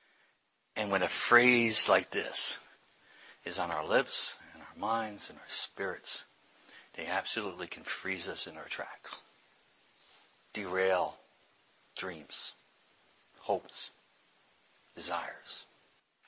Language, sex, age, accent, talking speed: English, male, 60-79, American, 105 wpm